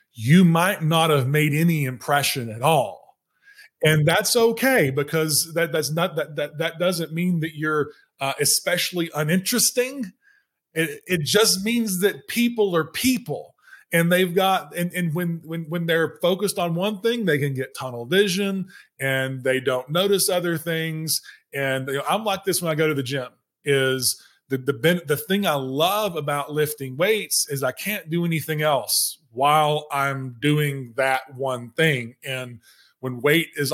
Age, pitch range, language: 20-39, 135-175 Hz, English